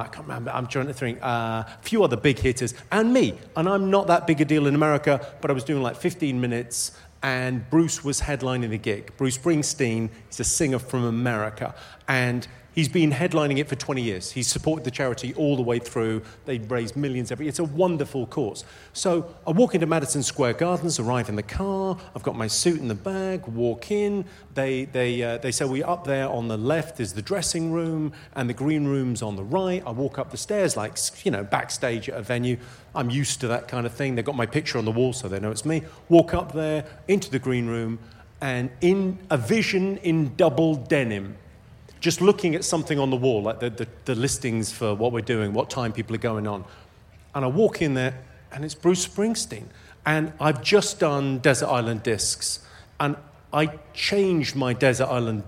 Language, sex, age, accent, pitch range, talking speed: English, male, 40-59, British, 120-160 Hz, 215 wpm